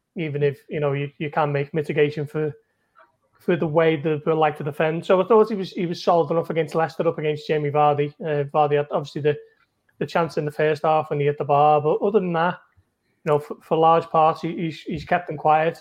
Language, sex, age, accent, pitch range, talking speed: English, male, 30-49, British, 155-180 Hz, 245 wpm